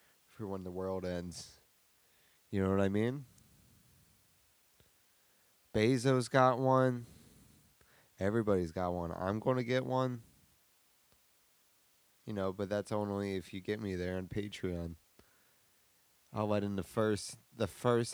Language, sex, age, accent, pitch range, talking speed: English, male, 30-49, American, 90-120 Hz, 125 wpm